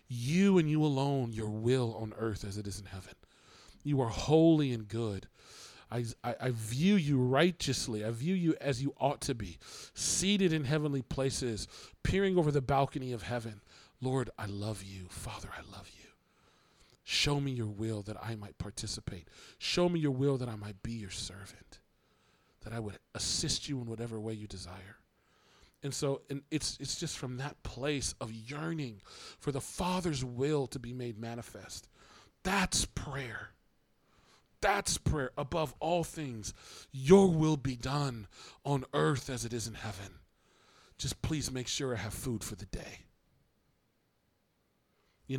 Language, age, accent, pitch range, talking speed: English, 40-59, American, 110-145 Hz, 165 wpm